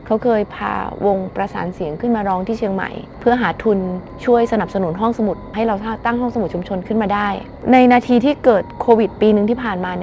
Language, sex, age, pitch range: Thai, female, 20-39, 200-245 Hz